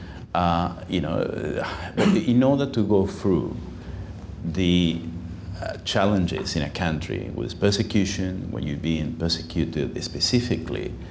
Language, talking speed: English, 115 wpm